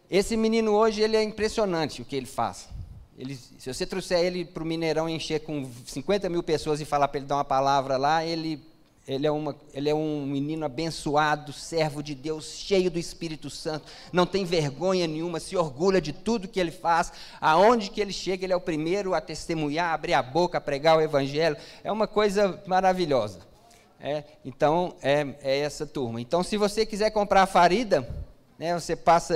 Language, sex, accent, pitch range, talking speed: Portuguese, male, Brazilian, 150-195 Hz, 180 wpm